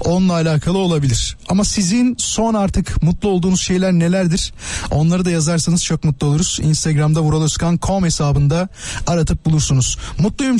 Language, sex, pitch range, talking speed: Turkish, male, 140-195 Hz, 130 wpm